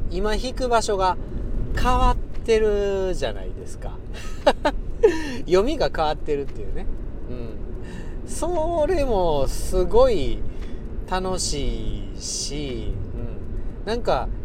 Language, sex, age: Japanese, male, 40-59